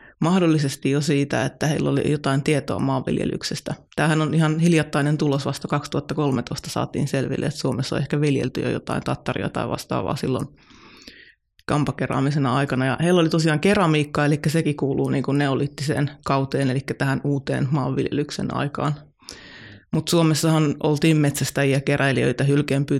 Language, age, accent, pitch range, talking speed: Finnish, 20-39, native, 140-155 Hz, 140 wpm